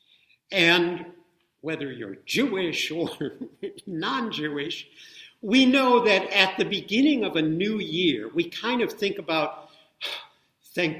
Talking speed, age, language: 120 wpm, 60-79, English